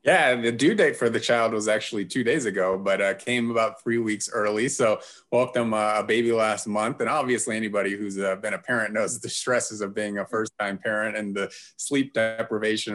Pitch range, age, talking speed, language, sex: 100-120 Hz, 30-49, 220 wpm, English, male